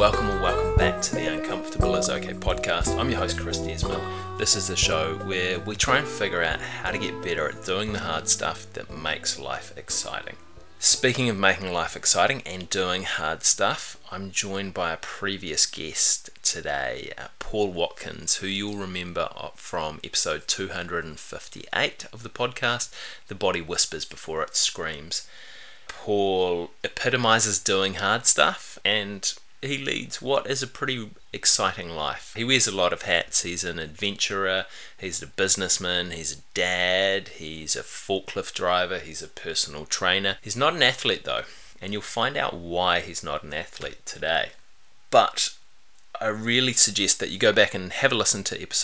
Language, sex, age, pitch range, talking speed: English, male, 20-39, 85-105 Hz, 170 wpm